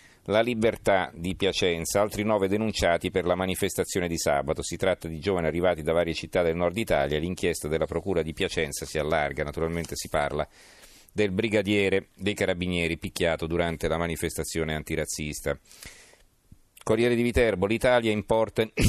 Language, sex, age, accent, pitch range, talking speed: Italian, male, 40-59, native, 85-105 Hz, 150 wpm